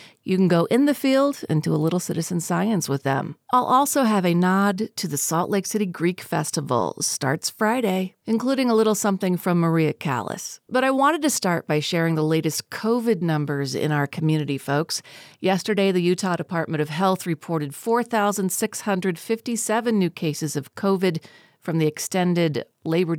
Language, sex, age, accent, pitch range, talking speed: English, female, 40-59, American, 155-195 Hz, 170 wpm